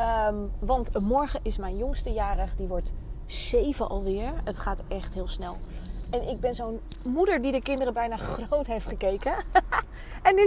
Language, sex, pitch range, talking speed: Dutch, female, 210-295 Hz, 165 wpm